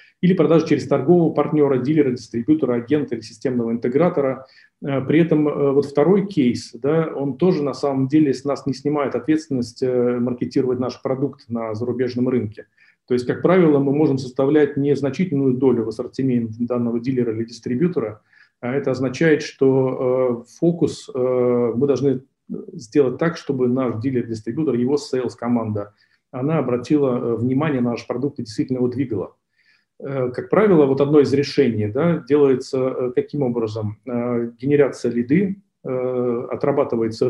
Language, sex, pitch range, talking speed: Russian, male, 125-145 Hz, 135 wpm